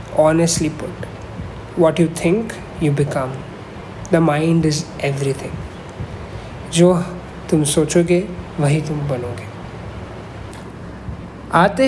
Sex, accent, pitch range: male, native, 130-180 Hz